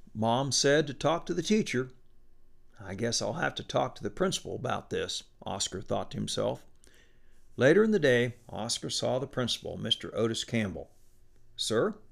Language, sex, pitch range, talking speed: English, male, 115-165 Hz, 170 wpm